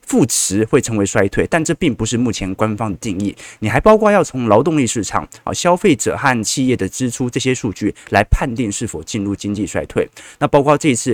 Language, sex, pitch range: Chinese, male, 110-170 Hz